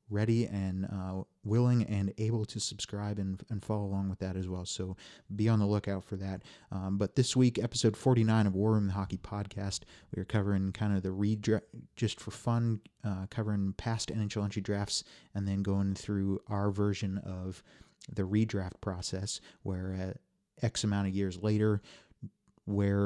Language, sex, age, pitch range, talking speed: English, male, 30-49, 95-110 Hz, 180 wpm